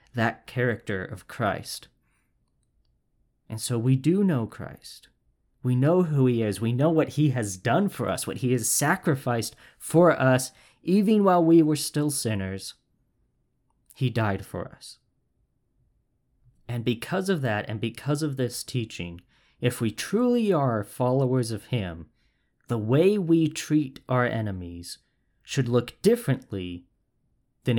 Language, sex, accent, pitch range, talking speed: English, male, American, 105-150 Hz, 140 wpm